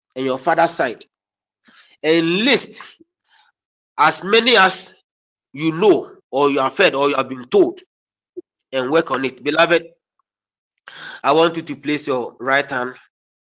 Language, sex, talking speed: English, male, 145 wpm